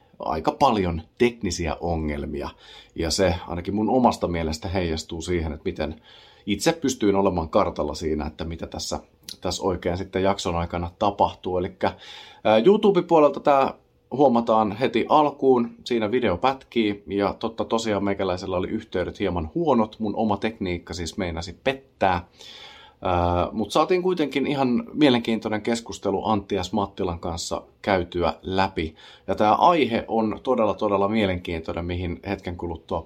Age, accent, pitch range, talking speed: 30-49, native, 85-115 Hz, 130 wpm